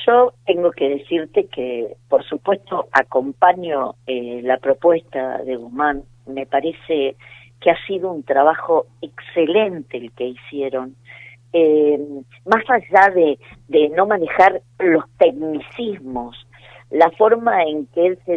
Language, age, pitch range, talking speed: Spanish, 50-69, 135-195 Hz, 125 wpm